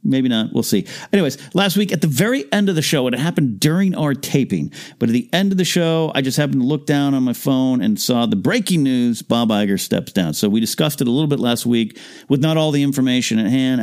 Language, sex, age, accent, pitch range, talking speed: English, male, 50-69, American, 115-165 Hz, 260 wpm